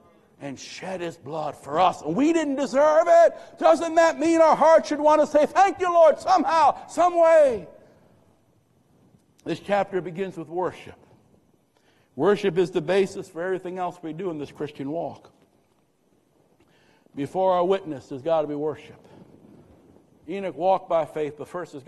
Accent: American